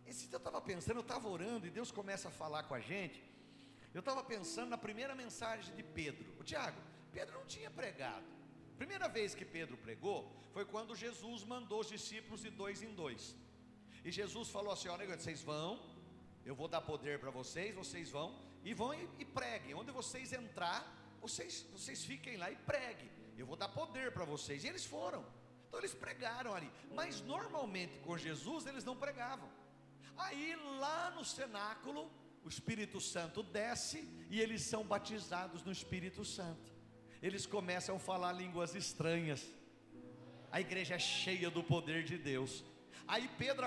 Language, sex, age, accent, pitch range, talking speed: Portuguese, male, 50-69, Brazilian, 170-230 Hz, 170 wpm